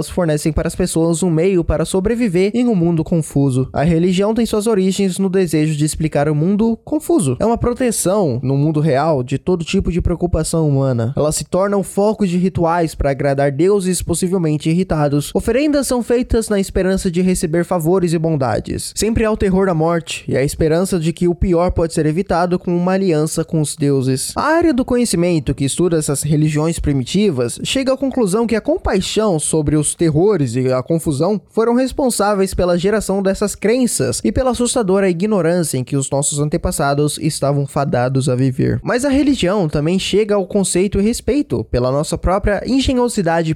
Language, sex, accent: Portuguese, male, Brazilian